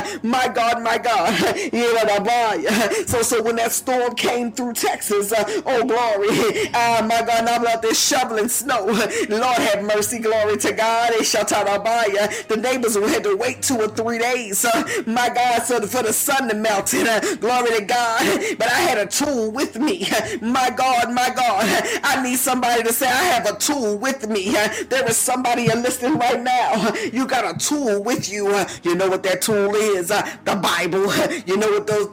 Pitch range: 220-275 Hz